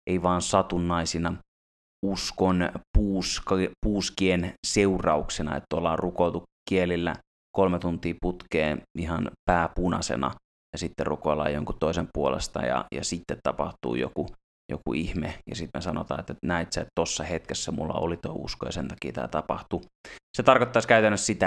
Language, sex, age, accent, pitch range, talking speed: Finnish, male, 30-49, native, 85-90 Hz, 145 wpm